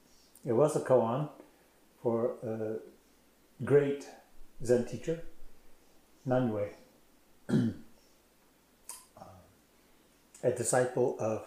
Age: 50-69